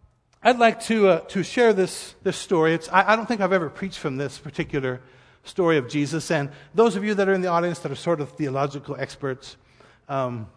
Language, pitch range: English, 135-190 Hz